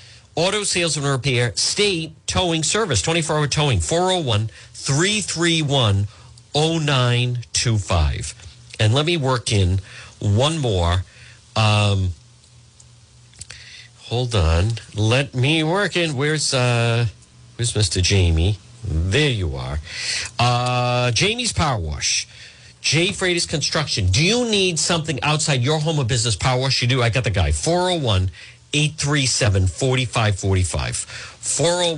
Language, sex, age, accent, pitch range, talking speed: English, male, 50-69, American, 105-150 Hz, 110 wpm